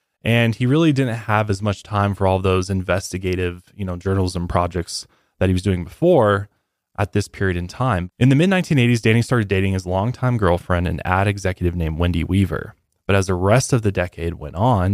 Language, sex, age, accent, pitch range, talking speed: English, male, 20-39, American, 90-115 Hz, 200 wpm